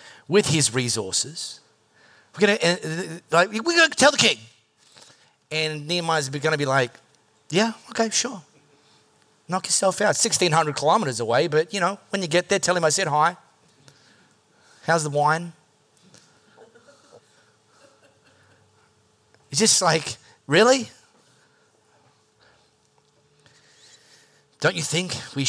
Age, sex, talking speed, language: 30-49, male, 120 wpm, English